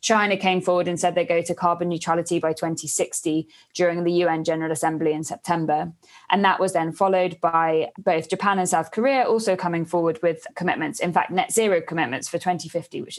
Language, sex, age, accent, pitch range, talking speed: English, female, 20-39, British, 170-200 Hz, 195 wpm